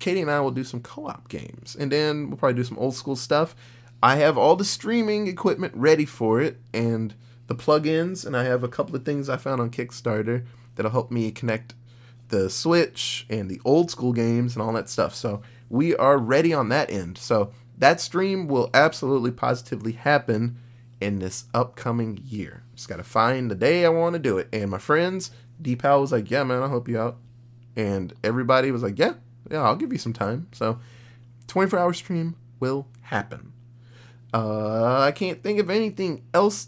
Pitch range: 120-155 Hz